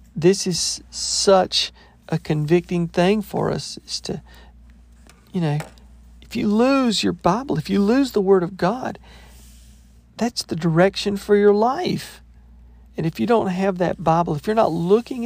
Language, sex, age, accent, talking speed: English, male, 50-69, American, 160 wpm